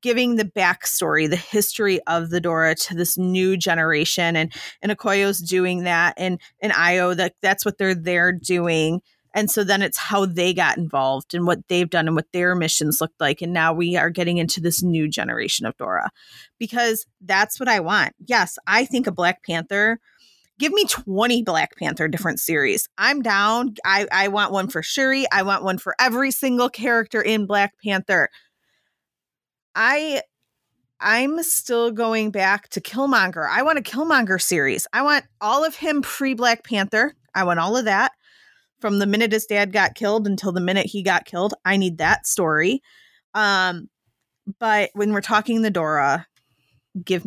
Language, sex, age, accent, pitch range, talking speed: English, female, 30-49, American, 170-220 Hz, 180 wpm